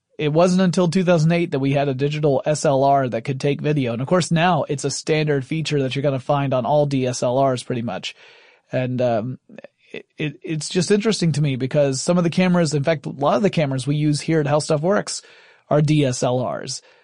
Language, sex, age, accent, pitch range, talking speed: English, male, 30-49, American, 145-175 Hz, 220 wpm